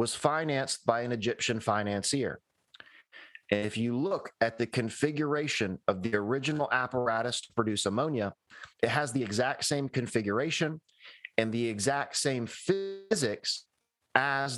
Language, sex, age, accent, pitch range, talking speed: English, male, 30-49, American, 115-150 Hz, 130 wpm